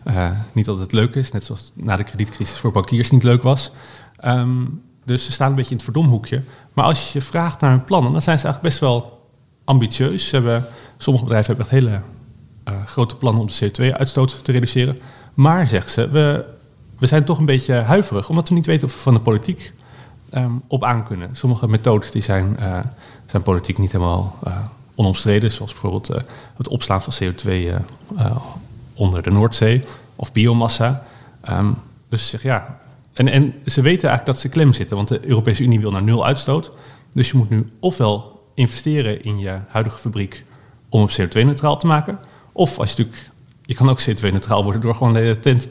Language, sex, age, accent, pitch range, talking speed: Dutch, male, 40-59, Dutch, 110-135 Hz, 200 wpm